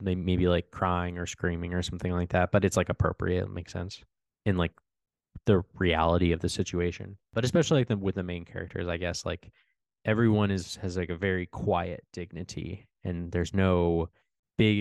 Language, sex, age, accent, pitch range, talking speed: English, male, 20-39, American, 90-110 Hz, 185 wpm